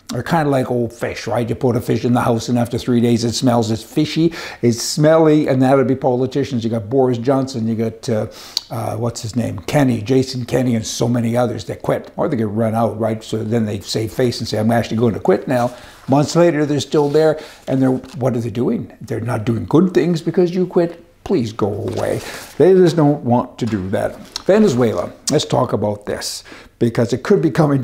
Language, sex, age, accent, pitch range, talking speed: English, male, 60-79, American, 115-140 Hz, 230 wpm